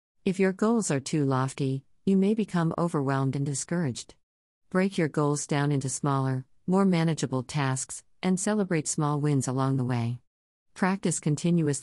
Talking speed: 150 wpm